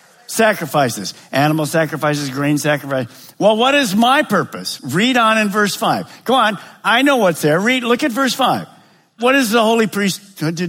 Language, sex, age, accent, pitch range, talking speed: English, male, 50-69, American, 155-235 Hz, 180 wpm